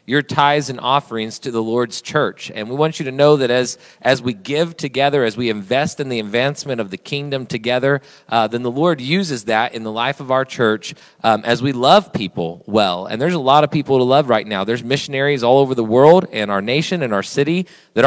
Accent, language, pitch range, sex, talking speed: American, English, 110-145 Hz, male, 235 wpm